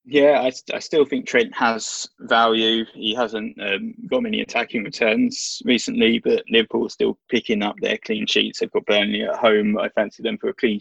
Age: 20-39